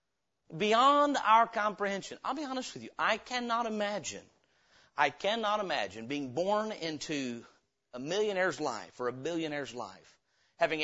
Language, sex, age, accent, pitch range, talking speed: English, male, 40-59, American, 165-225 Hz, 140 wpm